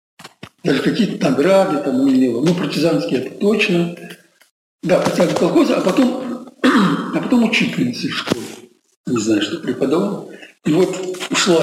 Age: 60-79